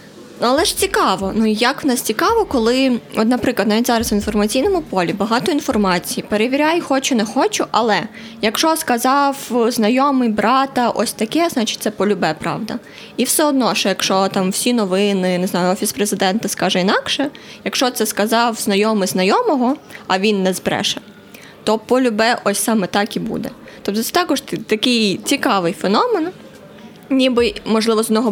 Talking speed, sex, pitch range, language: 155 wpm, female, 205-260 Hz, Ukrainian